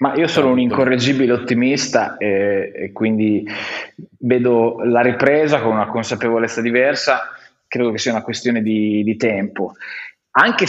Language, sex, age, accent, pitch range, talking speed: Italian, male, 20-39, native, 120-145 Hz, 140 wpm